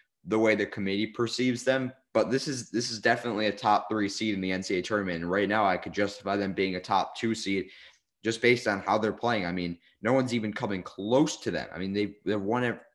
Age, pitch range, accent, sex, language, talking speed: 20-39, 95-115 Hz, American, male, English, 240 wpm